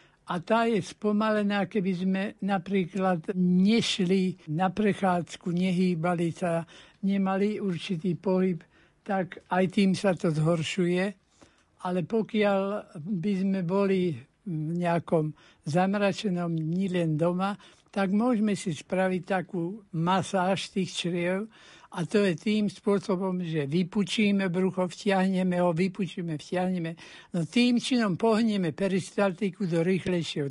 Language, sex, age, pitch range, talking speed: Slovak, male, 60-79, 175-200 Hz, 115 wpm